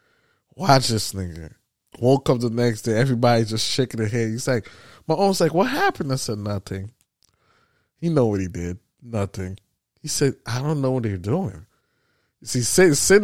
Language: English